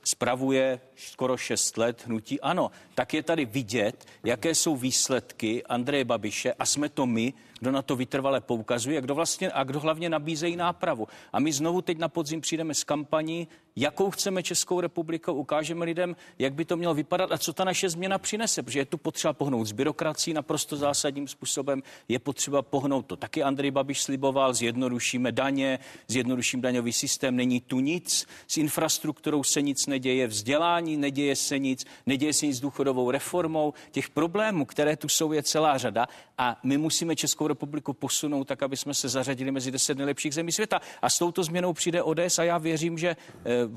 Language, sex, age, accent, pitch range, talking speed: Czech, male, 40-59, native, 135-175 Hz, 185 wpm